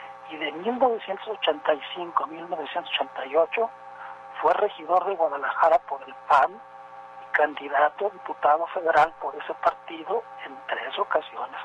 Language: Spanish